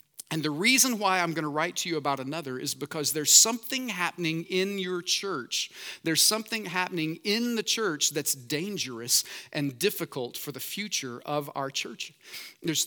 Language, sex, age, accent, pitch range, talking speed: English, male, 40-59, American, 145-185 Hz, 175 wpm